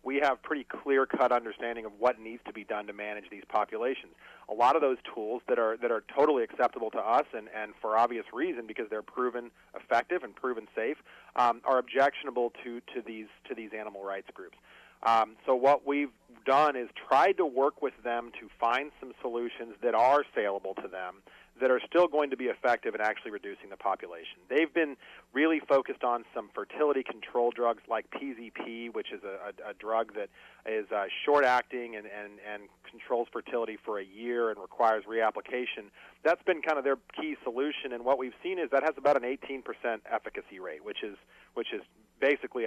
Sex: male